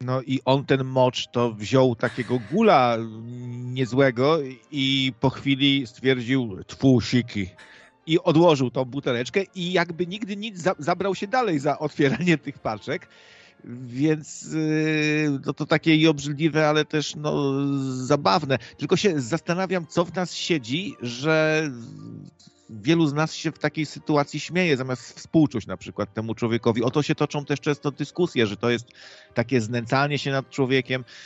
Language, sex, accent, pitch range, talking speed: Polish, male, native, 120-150 Hz, 145 wpm